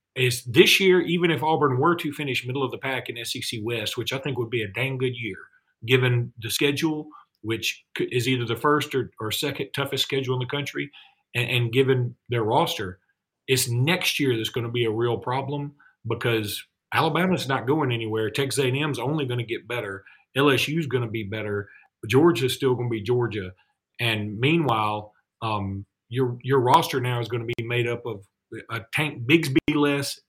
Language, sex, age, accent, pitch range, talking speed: English, male, 40-59, American, 120-145 Hz, 190 wpm